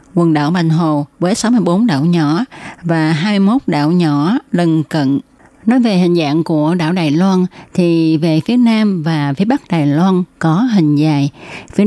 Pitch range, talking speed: 160-200 Hz, 175 wpm